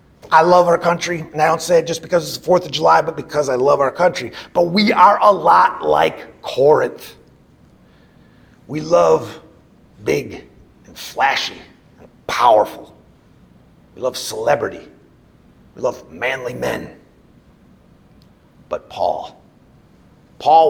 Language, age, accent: English, 50-69, American